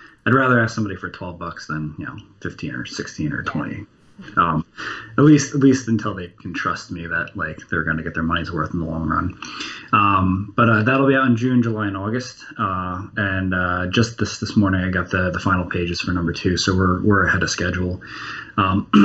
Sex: male